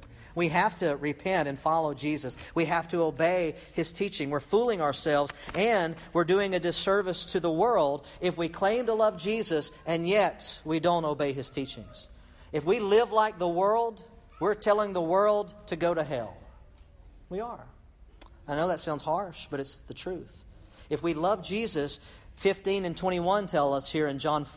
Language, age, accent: English, 50-69, American